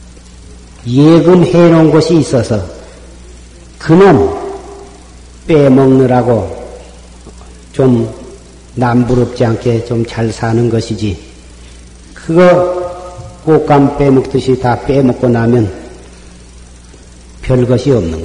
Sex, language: male, Korean